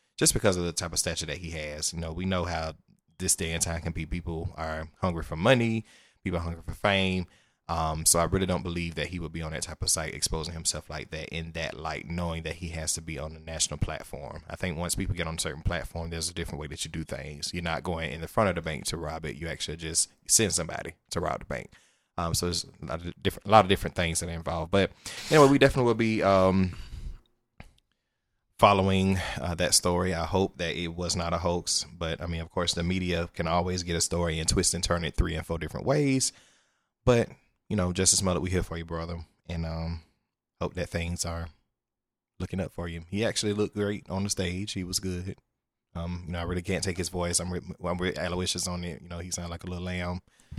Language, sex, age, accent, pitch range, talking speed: English, male, 20-39, American, 80-95 Hz, 250 wpm